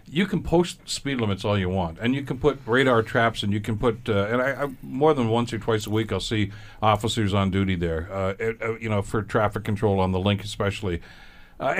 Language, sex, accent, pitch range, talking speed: English, male, American, 100-125 Hz, 240 wpm